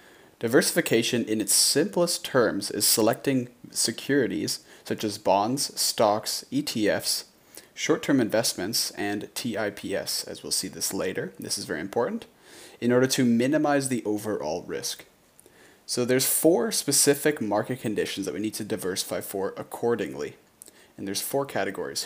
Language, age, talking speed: English, 30-49, 135 wpm